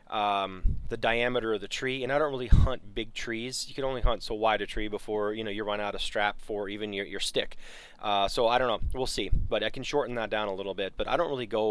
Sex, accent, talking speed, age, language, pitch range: male, American, 280 wpm, 20-39, English, 100-120 Hz